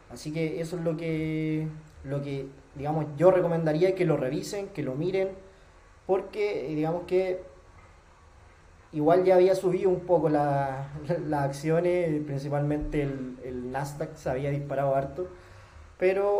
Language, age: Spanish, 20-39